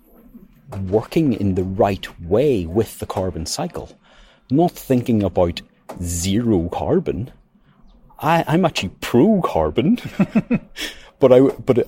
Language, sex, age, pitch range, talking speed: English, male, 30-49, 95-125 Hz, 110 wpm